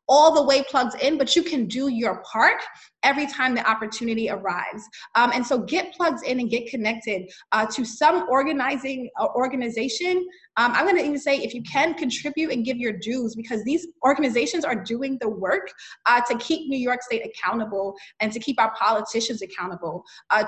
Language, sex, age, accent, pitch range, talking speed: English, female, 20-39, American, 225-280 Hz, 190 wpm